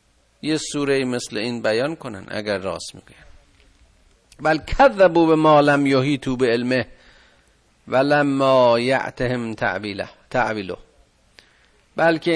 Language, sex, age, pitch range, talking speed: Persian, male, 50-69, 95-140 Hz, 105 wpm